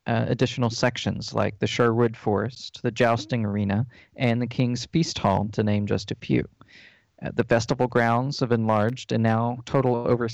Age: 40-59